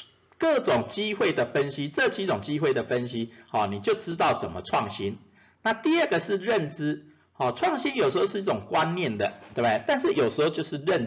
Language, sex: Chinese, male